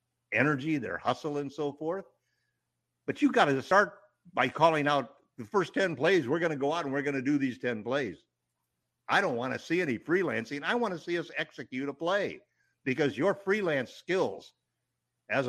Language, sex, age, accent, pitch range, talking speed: English, male, 50-69, American, 125-160 Hz, 200 wpm